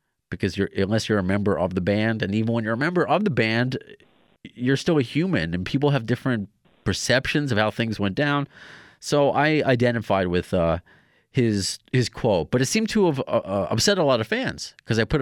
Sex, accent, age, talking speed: male, American, 30-49, 215 wpm